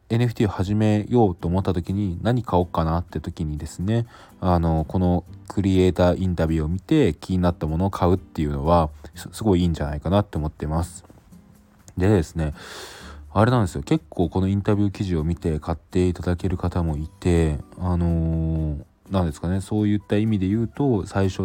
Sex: male